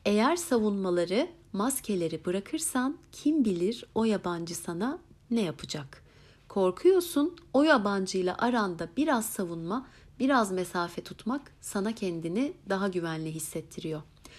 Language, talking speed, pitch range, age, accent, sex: Turkish, 105 wpm, 175-230 Hz, 60-79, native, female